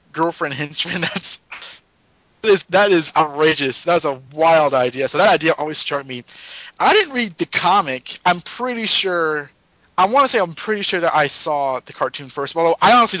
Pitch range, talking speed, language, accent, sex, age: 130-180 Hz, 185 wpm, English, American, male, 20-39